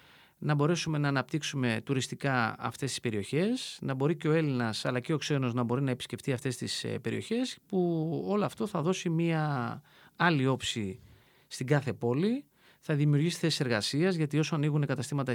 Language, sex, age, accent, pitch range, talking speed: Greek, male, 30-49, native, 125-180 Hz, 170 wpm